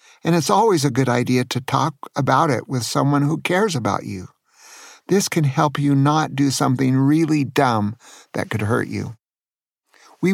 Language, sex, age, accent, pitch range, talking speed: English, male, 50-69, American, 130-155 Hz, 175 wpm